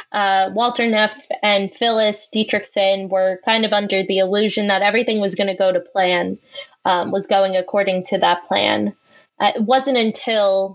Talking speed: 175 wpm